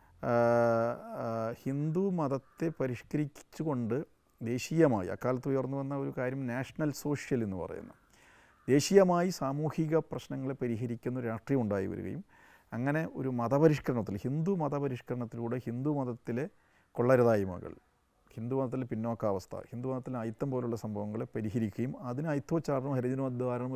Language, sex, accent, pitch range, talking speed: Malayalam, male, native, 115-140 Hz, 95 wpm